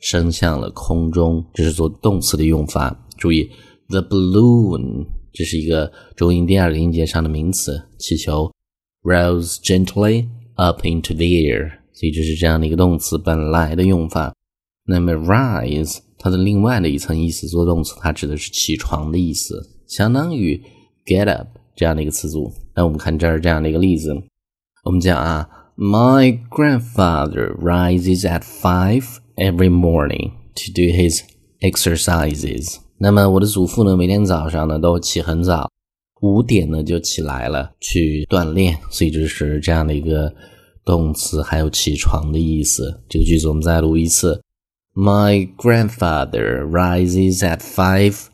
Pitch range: 80-95 Hz